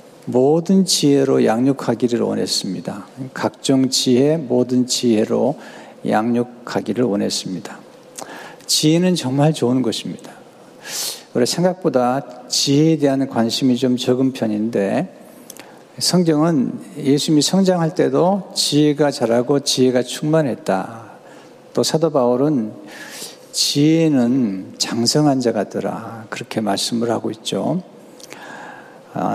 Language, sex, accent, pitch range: Korean, male, native, 120-160 Hz